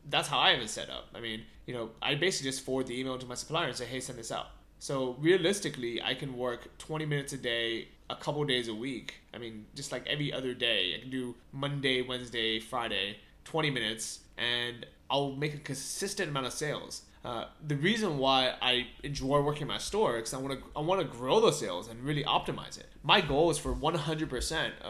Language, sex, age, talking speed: English, male, 20-39, 225 wpm